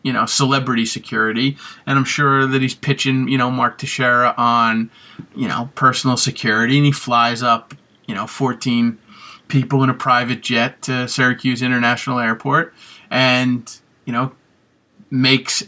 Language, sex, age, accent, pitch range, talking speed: English, male, 30-49, American, 120-140 Hz, 150 wpm